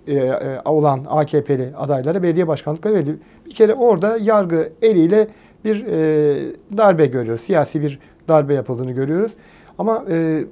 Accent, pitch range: native, 140-180 Hz